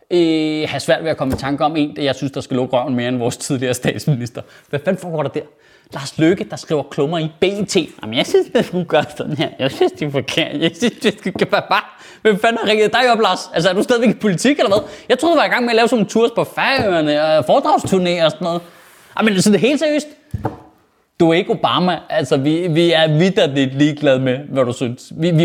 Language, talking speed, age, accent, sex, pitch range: Danish, 255 wpm, 20-39, native, male, 150-225 Hz